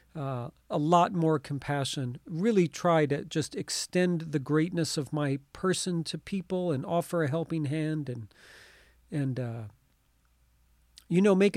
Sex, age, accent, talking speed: male, 40-59, American, 145 wpm